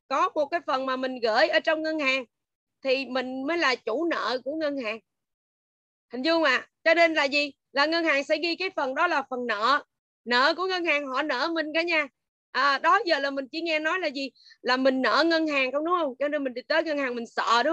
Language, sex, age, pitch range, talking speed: Vietnamese, female, 20-39, 260-320 Hz, 255 wpm